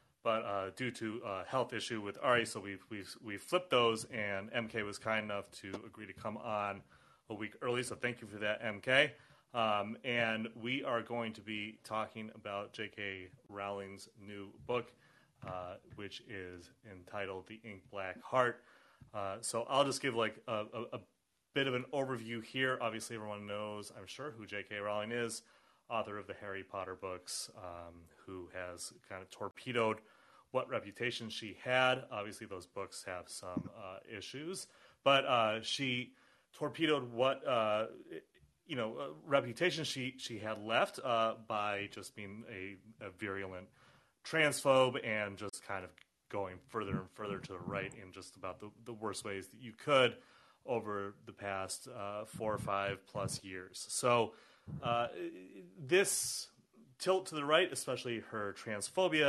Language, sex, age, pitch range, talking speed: English, male, 30-49, 100-125 Hz, 165 wpm